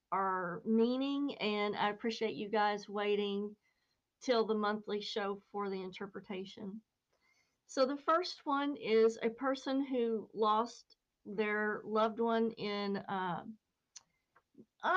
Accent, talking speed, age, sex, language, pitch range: American, 115 wpm, 50-69, female, English, 195-235 Hz